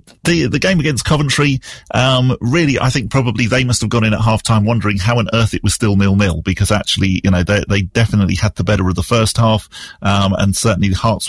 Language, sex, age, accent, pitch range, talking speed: English, male, 40-59, British, 100-130 Hz, 245 wpm